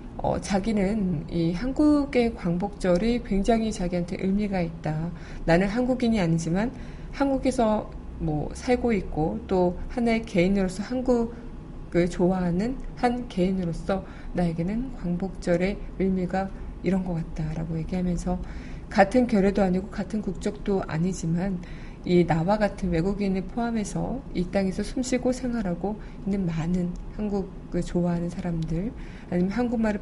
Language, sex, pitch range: Korean, female, 175-215 Hz